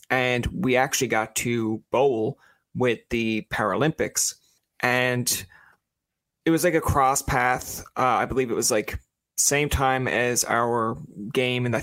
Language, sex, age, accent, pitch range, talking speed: English, male, 20-39, American, 115-135 Hz, 145 wpm